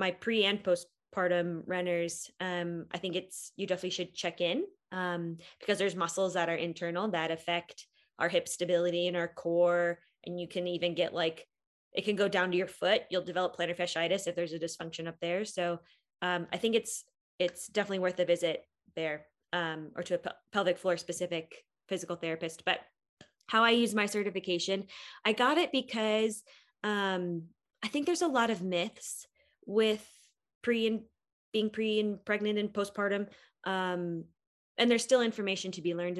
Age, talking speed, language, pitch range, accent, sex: 10-29, 180 wpm, English, 175-215 Hz, American, female